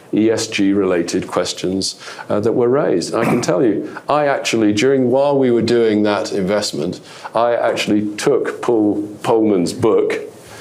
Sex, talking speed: male, 145 wpm